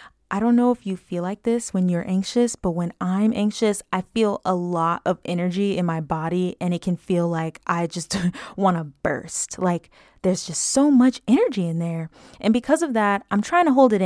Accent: American